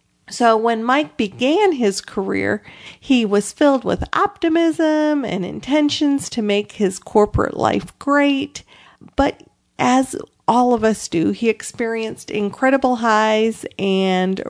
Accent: American